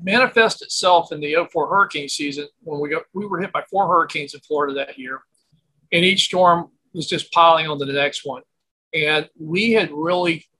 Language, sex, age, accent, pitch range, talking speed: English, male, 50-69, American, 150-195 Hz, 195 wpm